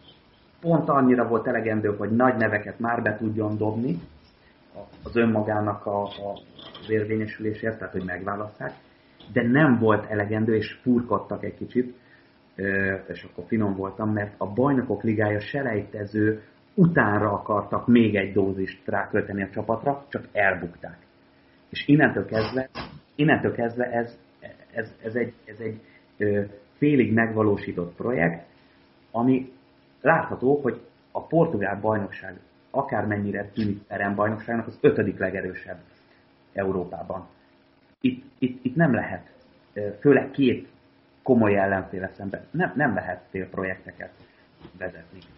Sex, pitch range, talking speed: male, 95-115 Hz, 120 wpm